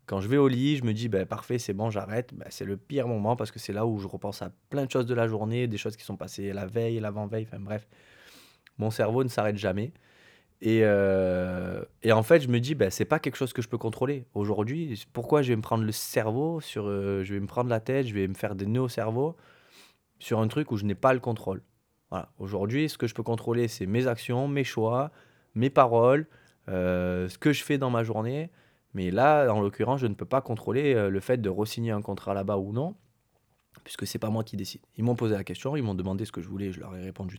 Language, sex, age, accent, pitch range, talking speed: French, male, 20-39, French, 100-125 Hz, 260 wpm